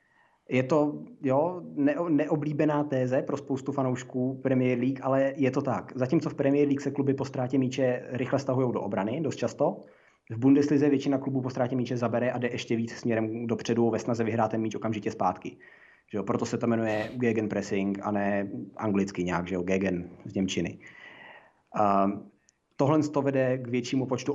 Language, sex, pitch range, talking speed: Czech, male, 110-130 Hz, 175 wpm